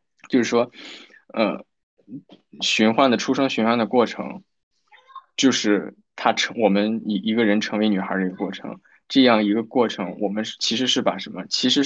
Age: 20-39